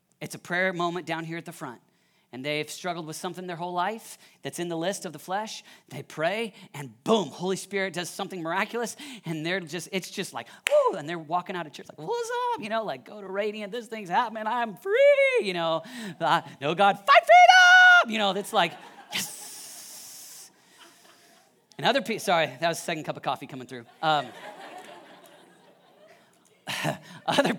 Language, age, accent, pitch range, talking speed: English, 40-59, American, 150-205 Hz, 185 wpm